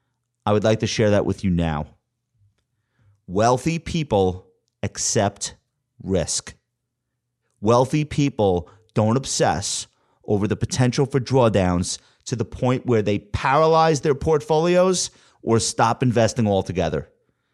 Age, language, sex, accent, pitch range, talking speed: 30-49, English, male, American, 105-135 Hz, 115 wpm